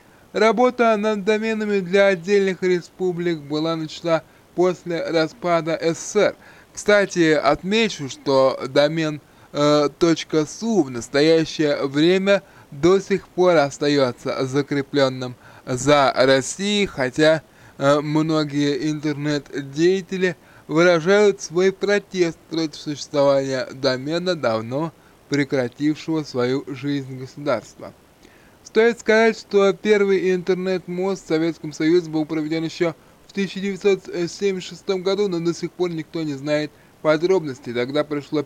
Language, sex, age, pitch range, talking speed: Russian, male, 20-39, 145-190 Hz, 105 wpm